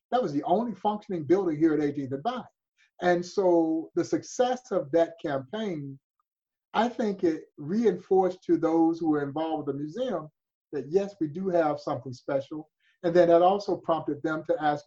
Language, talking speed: English, 180 wpm